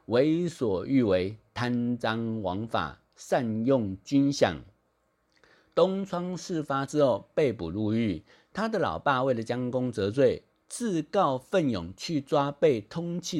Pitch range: 110-165 Hz